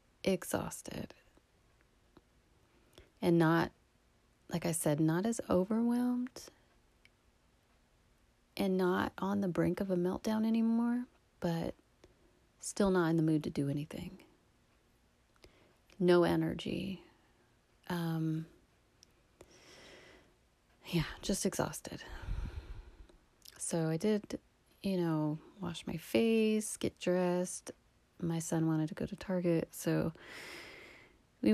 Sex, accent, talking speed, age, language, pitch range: female, American, 100 wpm, 30-49, English, 160-190 Hz